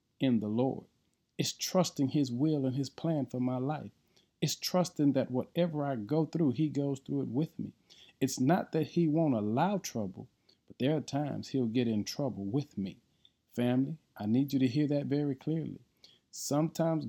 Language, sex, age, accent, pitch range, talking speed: English, male, 40-59, American, 110-145 Hz, 185 wpm